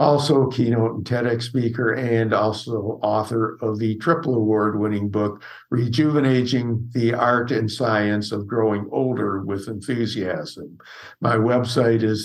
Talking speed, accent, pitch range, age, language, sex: 125 wpm, American, 110-130 Hz, 60-79, English, male